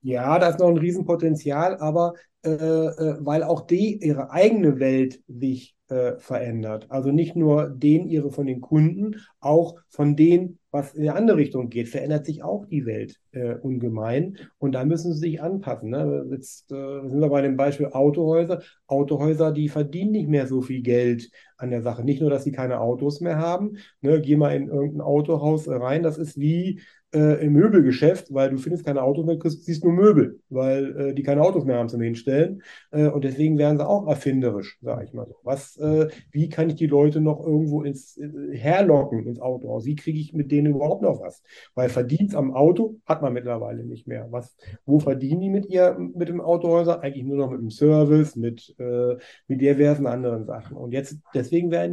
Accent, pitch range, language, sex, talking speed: German, 130-160 Hz, German, male, 200 wpm